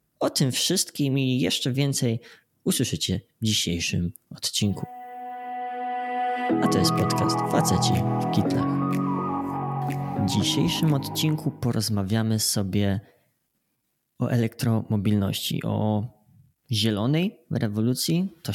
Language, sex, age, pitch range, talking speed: Polish, male, 20-39, 100-130 Hz, 90 wpm